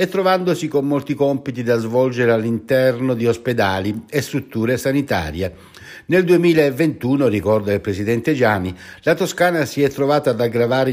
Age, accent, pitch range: 60-79, native, 105-150 Hz